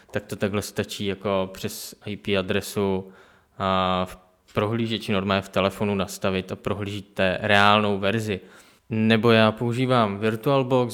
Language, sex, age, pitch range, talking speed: Czech, male, 20-39, 100-115 Hz, 125 wpm